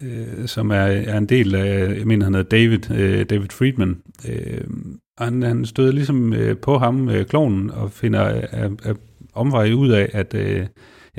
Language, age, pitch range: Danish, 40-59, 100-125 Hz